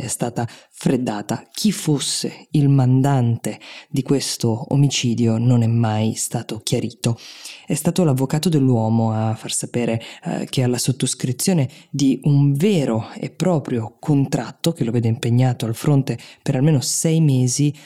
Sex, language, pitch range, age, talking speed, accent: female, Italian, 120-140 Hz, 20-39, 140 wpm, native